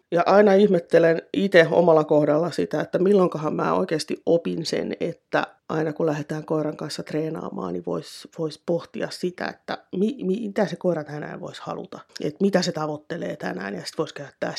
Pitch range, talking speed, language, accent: 155-175 Hz, 175 wpm, Finnish, native